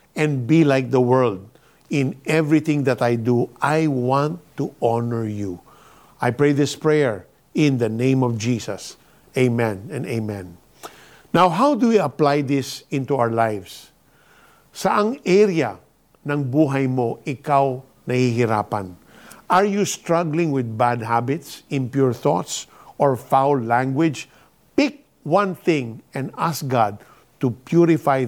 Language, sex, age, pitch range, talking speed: Filipino, male, 50-69, 125-165 Hz, 125 wpm